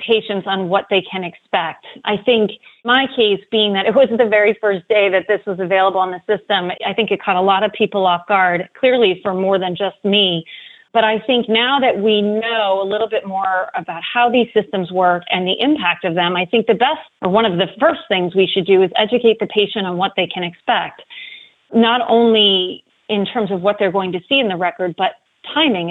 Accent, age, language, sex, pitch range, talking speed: American, 30-49, English, female, 185-225 Hz, 230 wpm